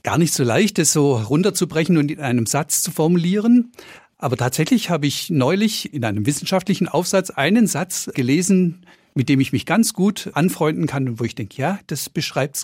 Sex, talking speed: male, 190 wpm